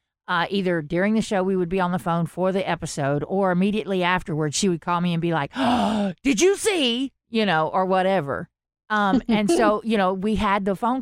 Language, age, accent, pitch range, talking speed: English, 40-59, American, 155-200 Hz, 220 wpm